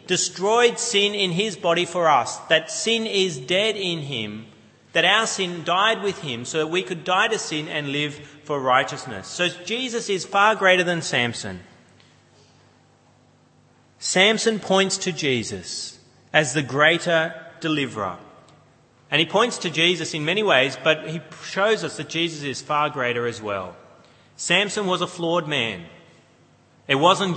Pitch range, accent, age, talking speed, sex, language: 125-170 Hz, Australian, 30-49, 155 wpm, male, English